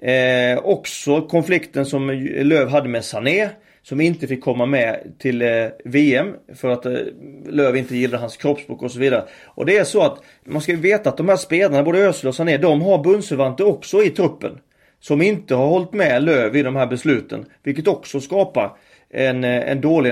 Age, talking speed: 30-49, 195 wpm